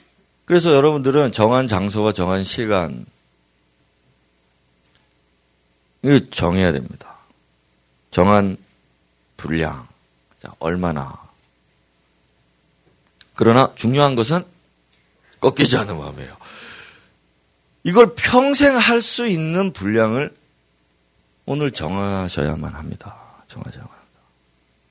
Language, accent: Korean, native